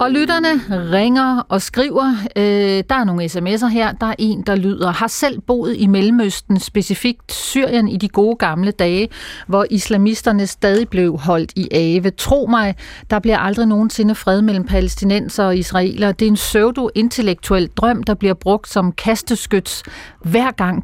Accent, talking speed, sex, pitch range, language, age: native, 165 wpm, female, 185-225 Hz, Danish, 40-59